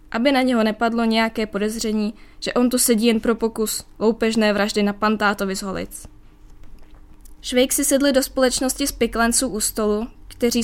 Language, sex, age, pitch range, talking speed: Czech, female, 20-39, 205-245 Hz, 160 wpm